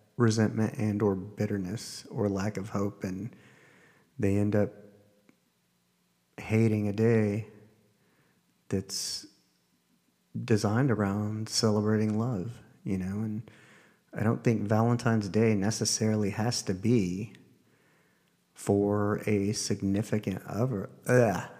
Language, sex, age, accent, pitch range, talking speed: English, male, 40-59, American, 100-115 Hz, 100 wpm